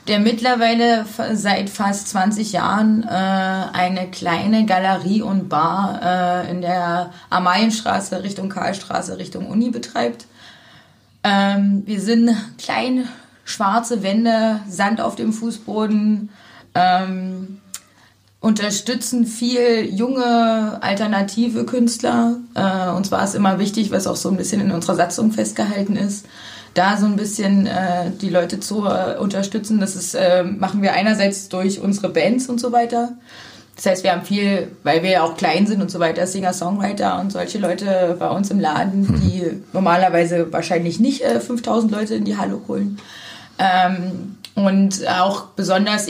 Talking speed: 150 wpm